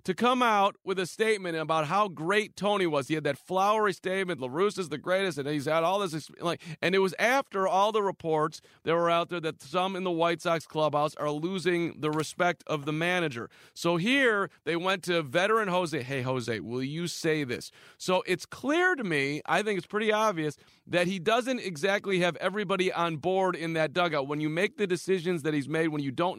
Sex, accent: male, American